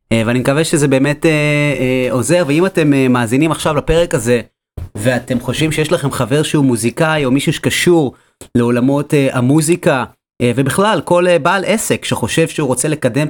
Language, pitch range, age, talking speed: Hebrew, 120-150 Hz, 30-49, 165 wpm